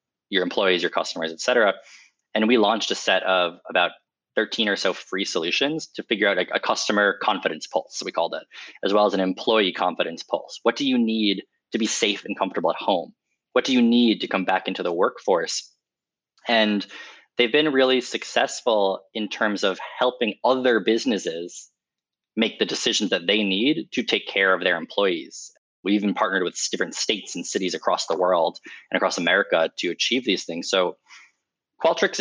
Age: 20-39